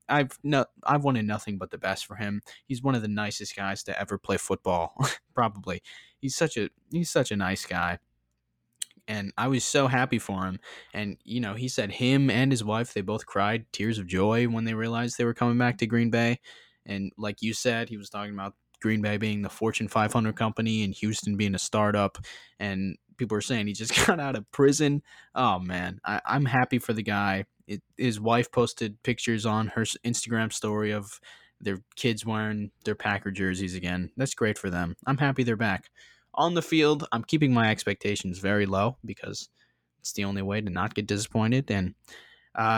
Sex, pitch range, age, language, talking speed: male, 100-120 Hz, 20-39, English, 200 wpm